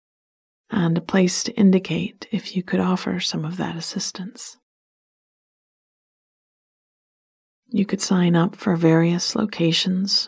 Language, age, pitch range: English, 40-59, 165-200 Hz